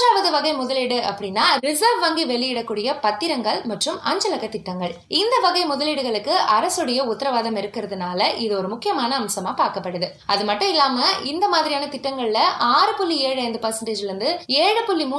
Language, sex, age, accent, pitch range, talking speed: Tamil, female, 20-39, native, 215-335 Hz, 55 wpm